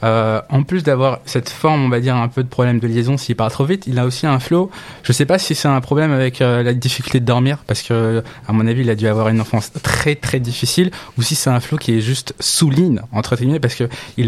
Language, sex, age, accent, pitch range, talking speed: French, male, 20-39, French, 120-150 Hz, 275 wpm